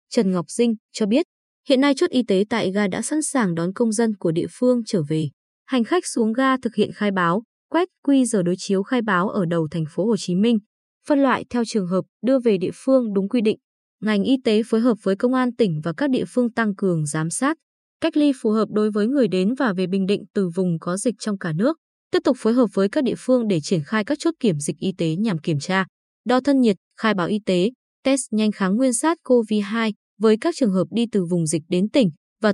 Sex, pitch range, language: female, 190-250 Hz, Vietnamese